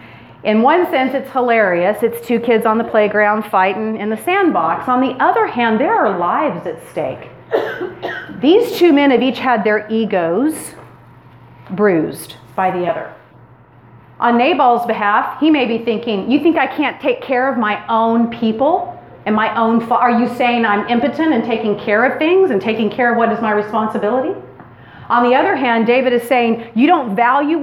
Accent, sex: American, female